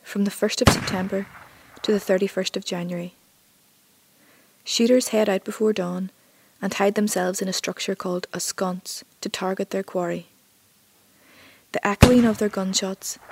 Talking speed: 155 wpm